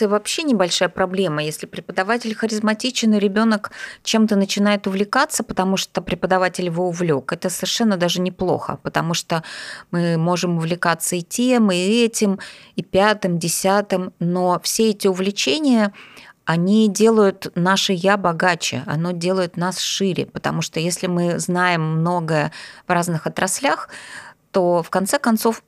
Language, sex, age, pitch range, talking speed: Russian, female, 20-39, 175-205 Hz, 135 wpm